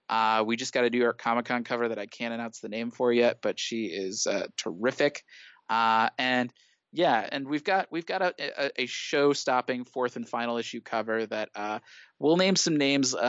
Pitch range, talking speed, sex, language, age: 115-125 Hz, 210 wpm, male, English, 20-39